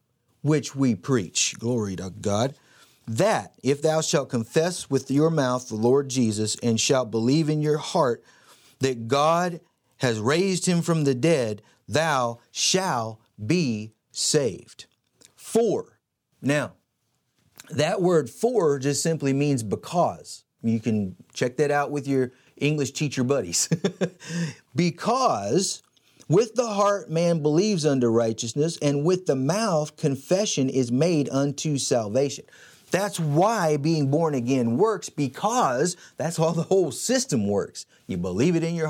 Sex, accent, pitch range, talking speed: male, American, 120-160 Hz, 135 wpm